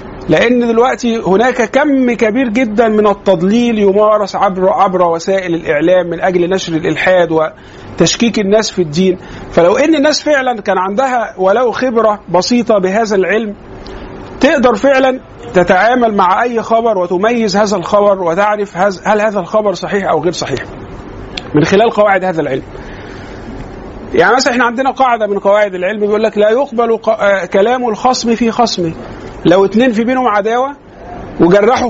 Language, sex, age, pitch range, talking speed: Arabic, male, 50-69, 185-235 Hz, 145 wpm